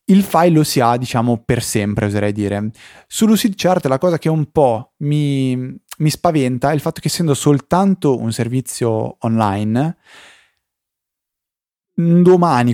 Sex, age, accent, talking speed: male, 20-39, native, 140 wpm